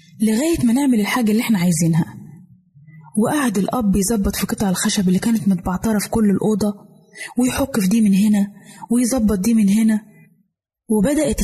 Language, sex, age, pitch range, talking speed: Arabic, female, 20-39, 195-250 Hz, 150 wpm